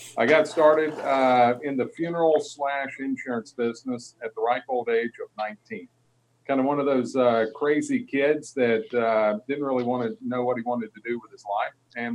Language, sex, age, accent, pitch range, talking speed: English, male, 50-69, American, 120-155 Hz, 200 wpm